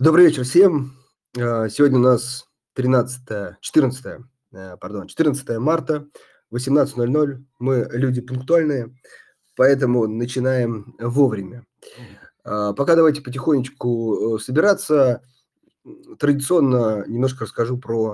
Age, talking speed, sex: 30-49, 80 wpm, male